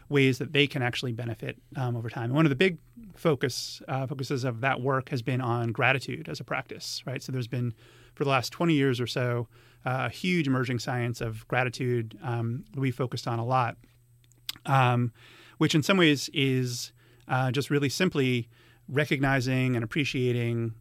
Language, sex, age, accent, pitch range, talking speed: English, male, 30-49, American, 120-135 Hz, 185 wpm